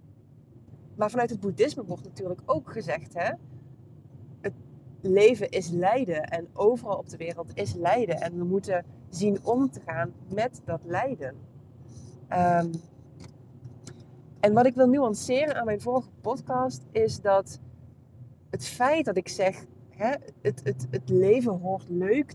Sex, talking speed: female, 135 wpm